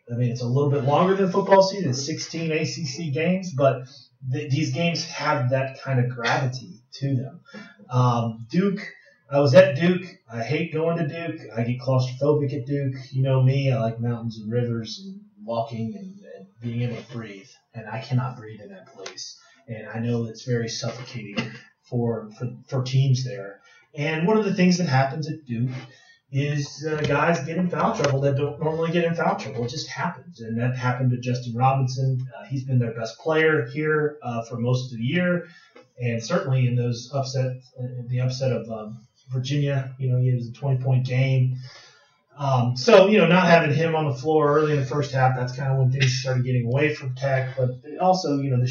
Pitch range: 120-155 Hz